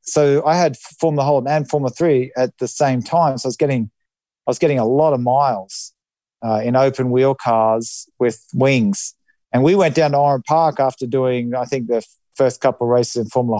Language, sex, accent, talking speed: English, male, Australian, 215 wpm